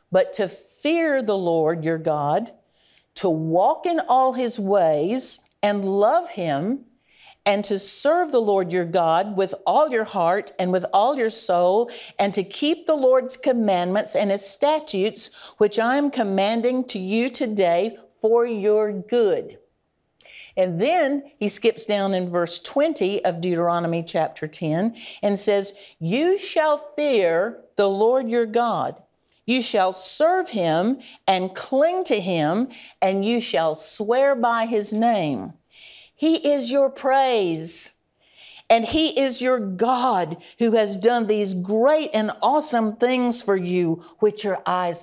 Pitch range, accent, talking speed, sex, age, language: 185-255 Hz, American, 145 wpm, female, 50-69, English